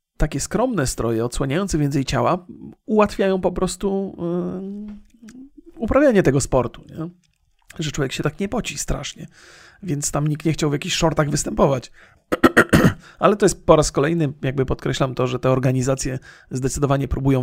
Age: 40-59